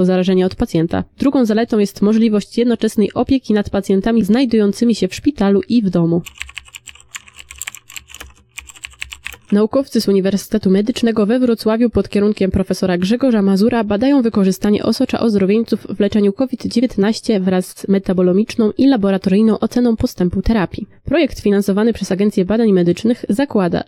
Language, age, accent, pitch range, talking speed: Polish, 20-39, native, 195-235 Hz, 130 wpm